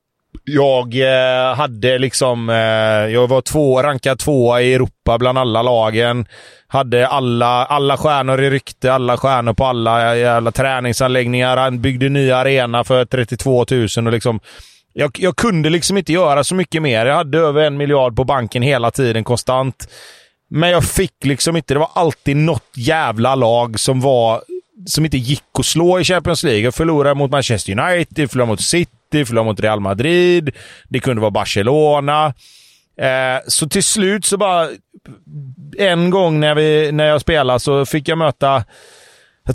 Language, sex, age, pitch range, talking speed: Swedish, male, 30-49, 125-155 Hz, 165 wpm